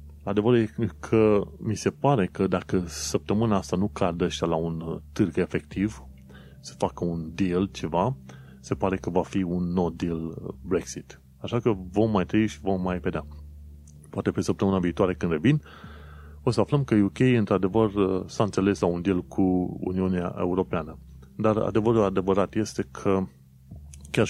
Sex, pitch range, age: male, 75-100 Hz, 30-49